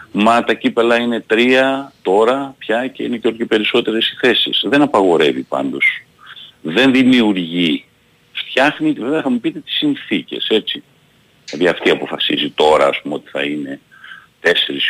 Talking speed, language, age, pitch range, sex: 160 wpm, Greek, 50-69, 90-125 Hz, male